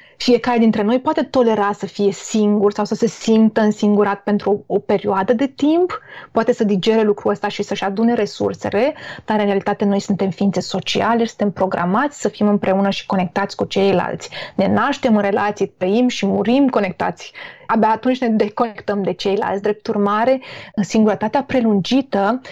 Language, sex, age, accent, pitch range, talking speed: Romanian, female, 20-39, native, 205-245 Hz, 165 wpm